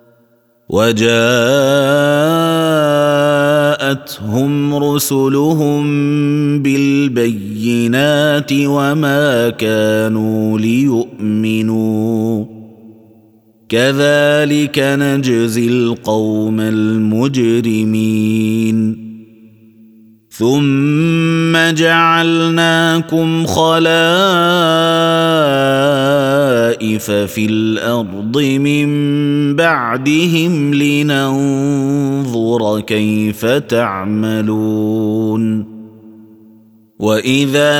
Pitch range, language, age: 115-145 Hz, Arabic, 30-49